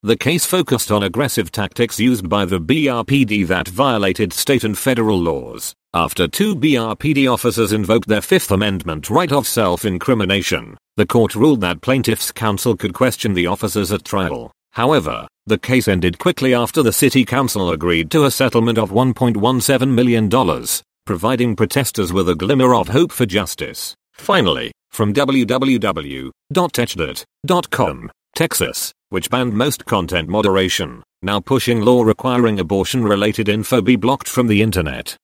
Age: 40-59